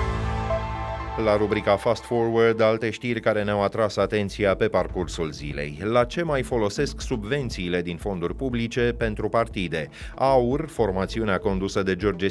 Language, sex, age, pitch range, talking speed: Romanian, male, 30-49, 90-115 Hz, 135 wpm